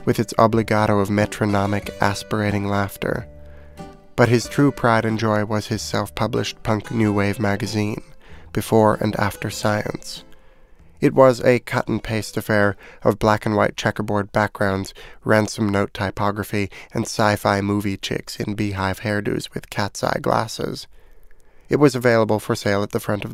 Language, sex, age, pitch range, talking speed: English, male, 30-49, 100-115 Hz, 140 wpm